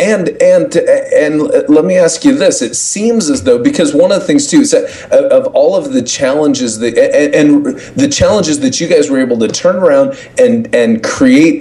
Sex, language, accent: male, English, American